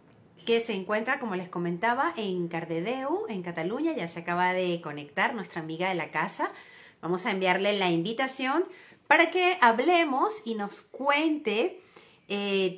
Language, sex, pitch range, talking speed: Spanish, female, 180-250 Hz, 150 wpm